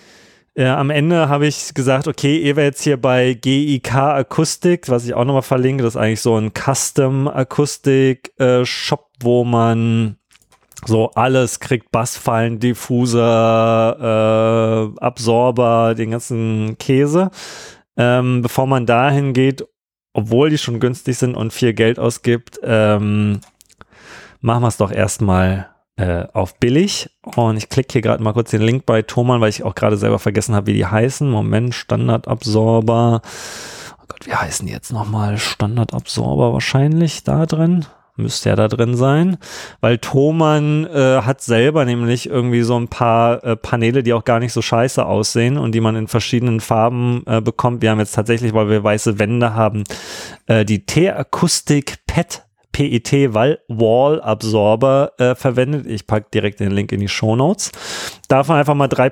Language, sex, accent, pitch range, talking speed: German, male, German, 110-135 Hz, 160 wpm